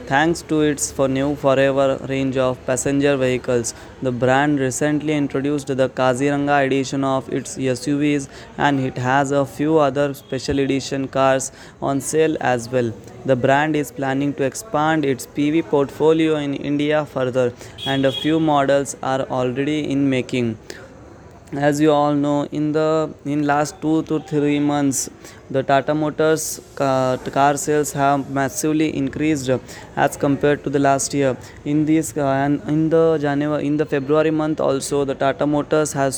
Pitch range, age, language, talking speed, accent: 135-150 Hz, 20-39, Hindi, 160 wpm, native